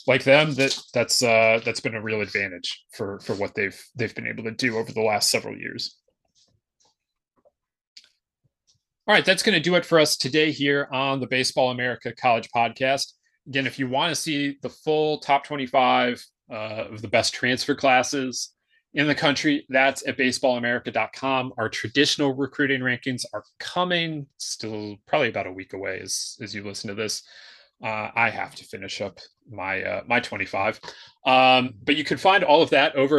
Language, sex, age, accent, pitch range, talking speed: English, male, 30-49, American, 115-140 Hz, 180 wpm